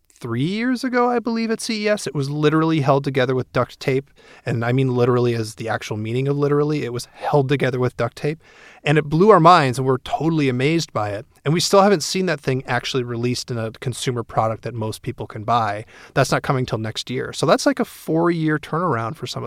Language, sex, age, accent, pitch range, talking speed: English, male, 30-49, American, 120-150 Hz, 230 wpm